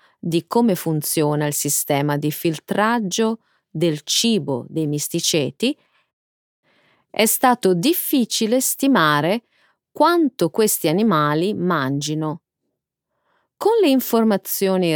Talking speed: 90 wpm